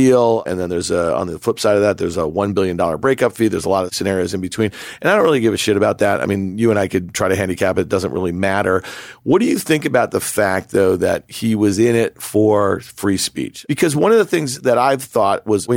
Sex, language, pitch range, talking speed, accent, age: male, English, 100-125 Hz, 275 wpm, American, 40-59